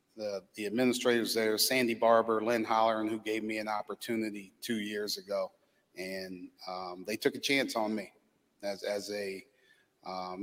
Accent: American